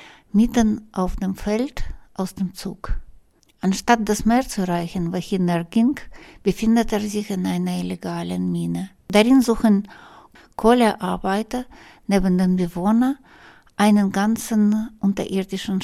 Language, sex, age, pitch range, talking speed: German, female, 60-79, 185-220 Hz, 115 wpm